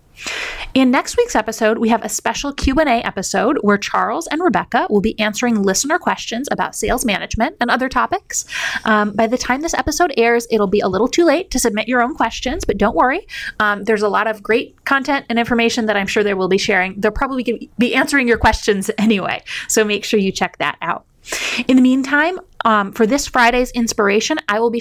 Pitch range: 210-260 Hz